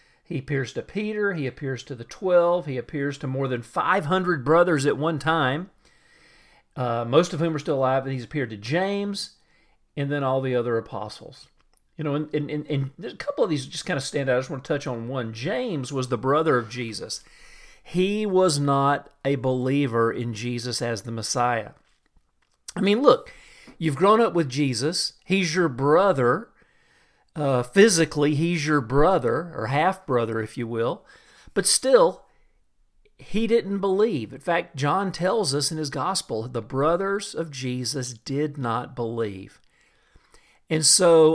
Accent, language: American, English